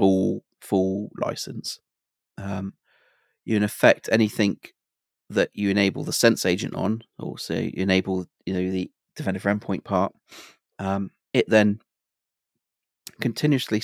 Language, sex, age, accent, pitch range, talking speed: English, male, 30-49, British, 95-110 Hz, 130 wpm